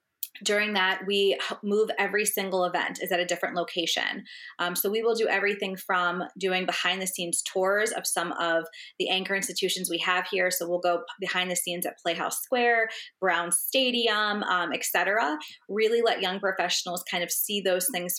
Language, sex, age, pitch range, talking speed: English, female, 20-39, 175-195 Hz, 180 wpm